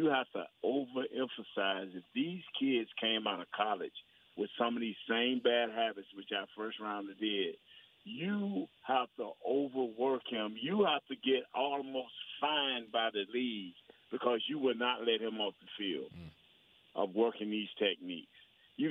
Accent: American